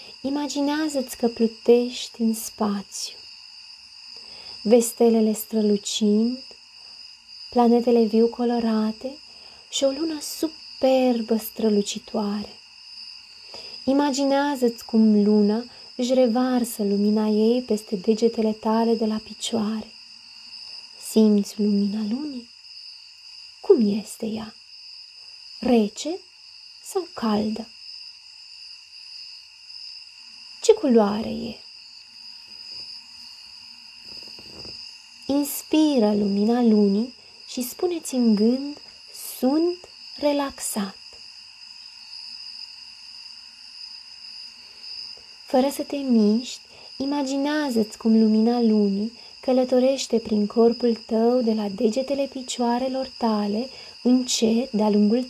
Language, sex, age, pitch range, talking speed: Romanian, female, 20-39, 220-305 Hz, 75 wpm